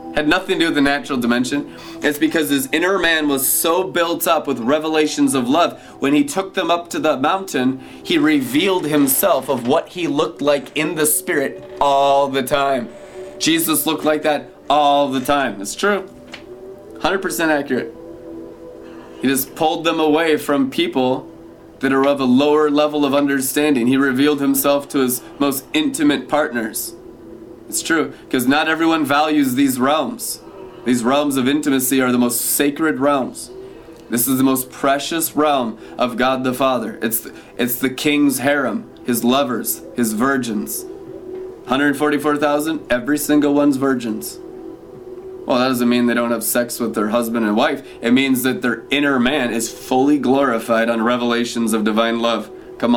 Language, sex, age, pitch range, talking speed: English, male, 30-49, 125-160 Hz, 165 wpm